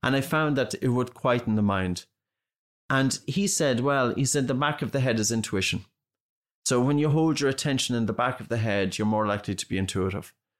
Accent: Irish